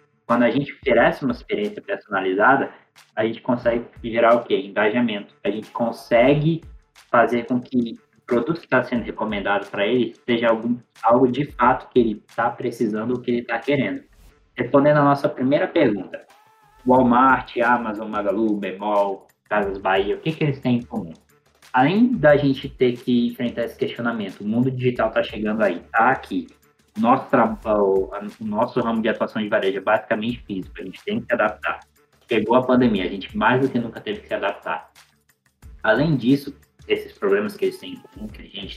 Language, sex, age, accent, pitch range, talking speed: Portuguese, male, 20-39, Brazilian, 115-145 Hz, 180 wpm